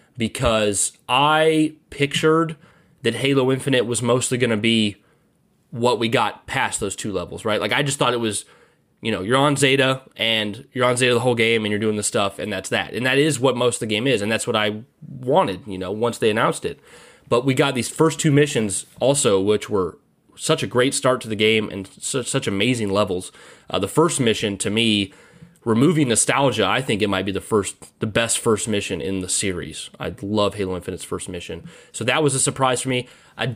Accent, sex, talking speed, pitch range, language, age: American, male, 220 wpm, 110-140 Hz, English, 20-39